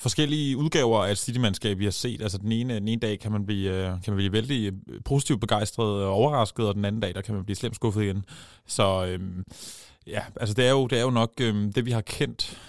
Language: Danish